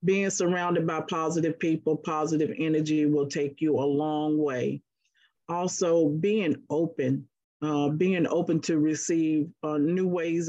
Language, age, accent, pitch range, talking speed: English, 40-59, American, 150-175 Hz, 135 wpm